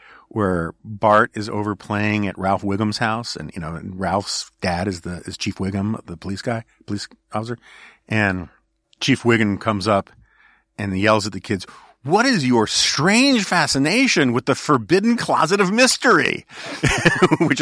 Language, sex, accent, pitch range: English, male, American, 95-115 Hz